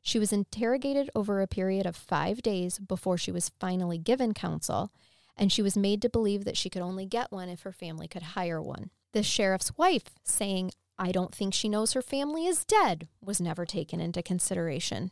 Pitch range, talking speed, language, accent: 180-240 Hz, 200 wpm, English, American